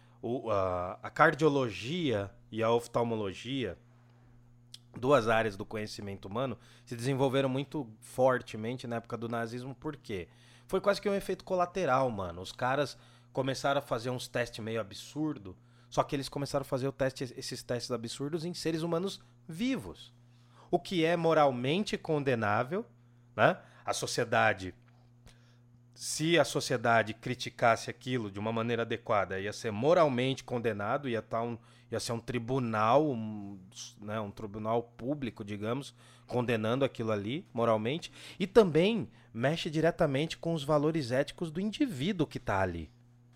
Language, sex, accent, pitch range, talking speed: Portuguese, male, Brazilian, 115-145 Hz, 145 wpm